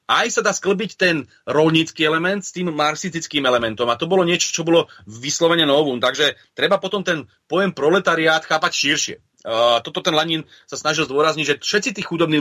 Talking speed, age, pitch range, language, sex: 185 wpm, 30-49, 140-165 Hz, Slovak, male